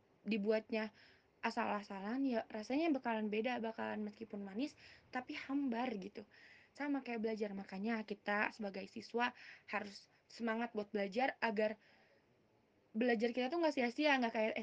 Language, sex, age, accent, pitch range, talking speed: Indonesian, female, 20-39, native, 205-245 Hz, 125 wpm